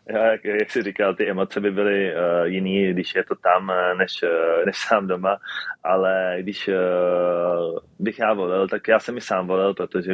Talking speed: 190 wpm